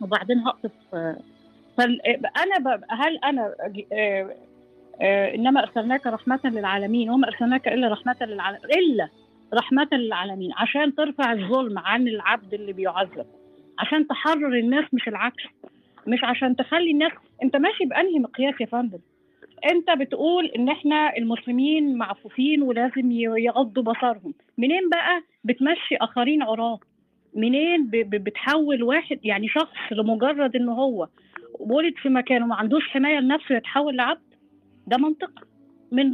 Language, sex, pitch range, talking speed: Arabic, female, 230-290 Hz, 125 wpm